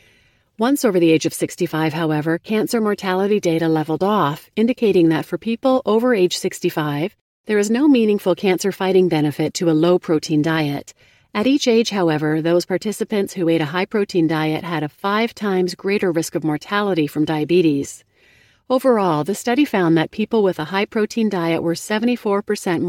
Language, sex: English, female